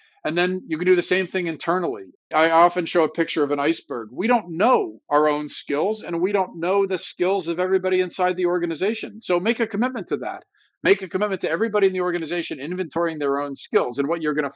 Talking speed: 230 wpm